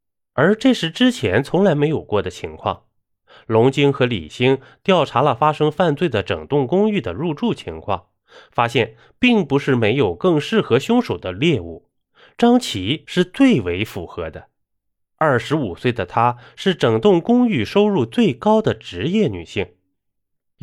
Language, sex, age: Chinese, male, 20-39